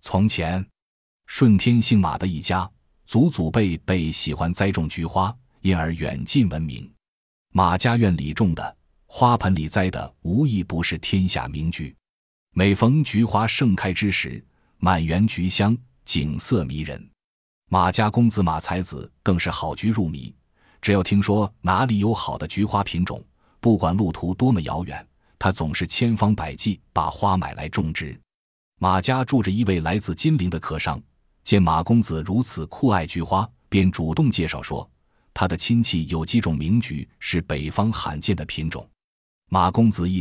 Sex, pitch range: male, 80-110 Hz